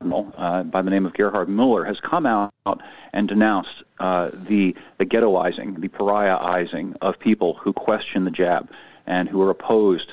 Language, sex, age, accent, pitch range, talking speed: English, male, 40-59, American, 95-120 Hz, 165 wpm